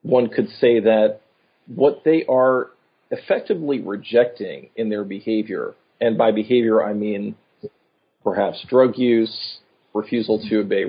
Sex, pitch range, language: male, 105-125 Hz, English